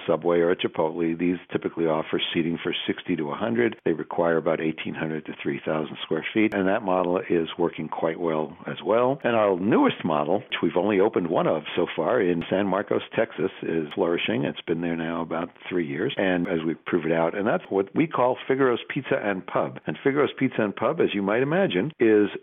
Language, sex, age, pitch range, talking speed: English, male, 60-79, 90-105 Hz, 210 wpm